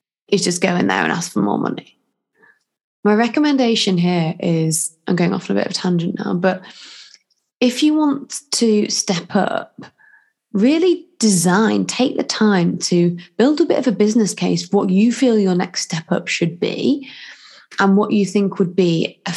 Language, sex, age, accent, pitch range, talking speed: English, female, 20-39, British, 175-245 Hz, 190 wpm